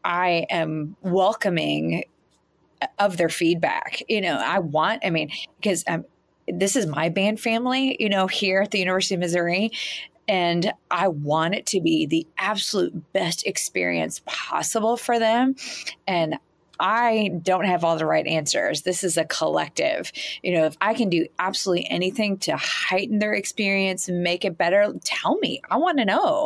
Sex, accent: female, American